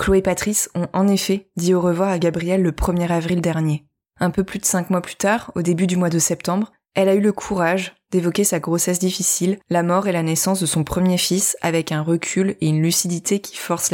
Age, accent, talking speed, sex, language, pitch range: 20-39, French, 235 wpm, female, French, 170-195 Hz